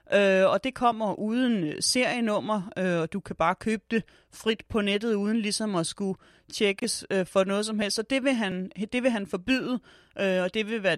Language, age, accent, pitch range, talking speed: Danish, 30-49, native, 185-220 Hz, 180 wpm